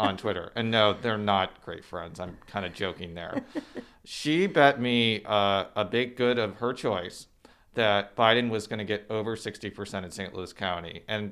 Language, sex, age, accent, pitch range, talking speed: English, male, 40-59, American, 110-140 Hz, 190 wpm